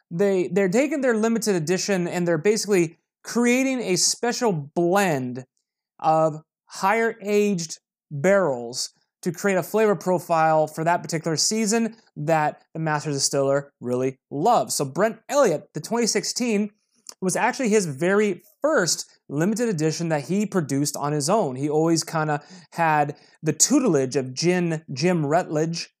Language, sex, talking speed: English, male, 140 wpm